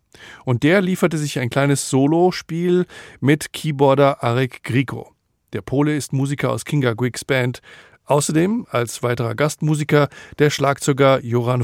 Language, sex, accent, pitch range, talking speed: German, male, German, 120-155 Hz, 135 wpm